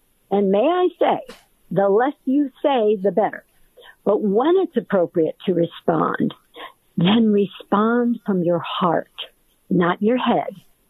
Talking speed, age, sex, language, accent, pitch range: 130 wpm, 50-69, female, English, American, 180-230 Hz